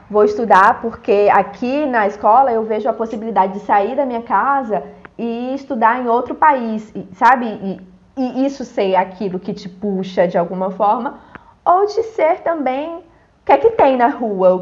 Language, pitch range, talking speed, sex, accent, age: Portuguese, 190-260 Hz, 180 wpm, female, Brazilian, 20-39